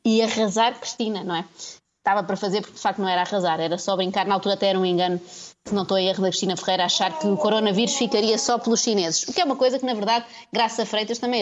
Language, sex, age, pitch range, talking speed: Portuguese, female, 20-39, 185-230 Hz, 265 wpm